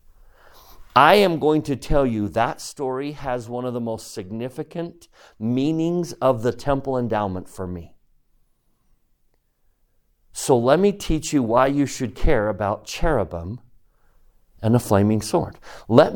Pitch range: 110-160 Hz